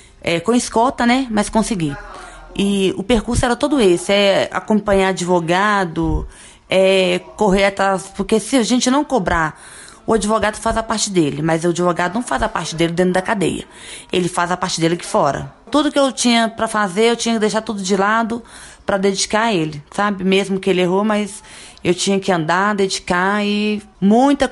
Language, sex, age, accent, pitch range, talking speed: Portuguese, female, 20-39, Brazilian, 180-220 Hz, 190 wpm